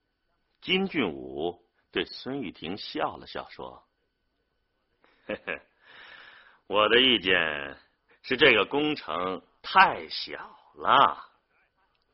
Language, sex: Chinese, male